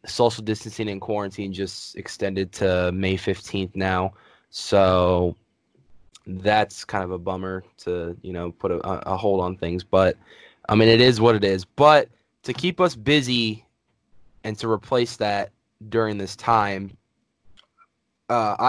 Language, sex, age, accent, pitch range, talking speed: English, male, 10-29, American, 95-110 Hz, 150 wpm